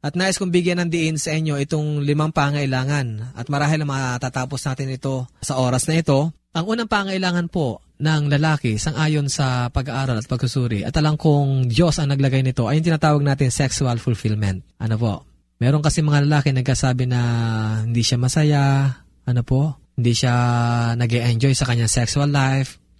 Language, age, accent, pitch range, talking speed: Filipino, 20-39, native, 125-155 Hz, 170 wpm